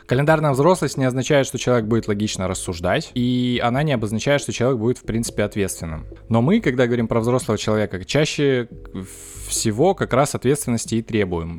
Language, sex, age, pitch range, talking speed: Russian, male, 20-39, 105-130 Hz, 170 wpm